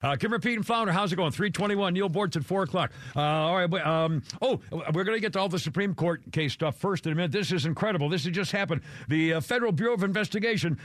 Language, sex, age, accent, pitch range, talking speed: English, male, 50-69, American, 155-205 Hz, 260 wpm